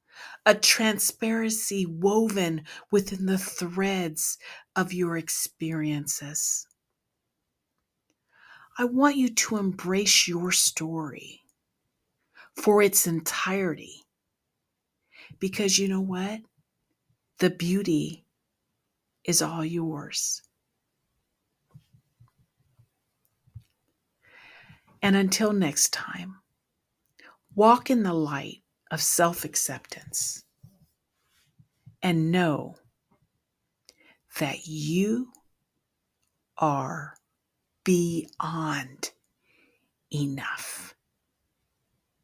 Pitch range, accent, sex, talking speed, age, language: 160-200 Hz, American, female, 65 wpm, 50-69, English